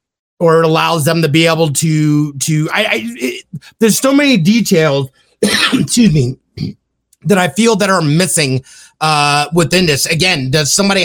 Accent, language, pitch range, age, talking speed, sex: American, English, 150-185 Hz, 30-49, 155 wpm, male